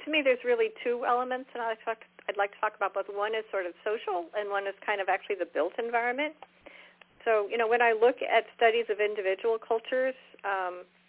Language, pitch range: English, 180-230 Hz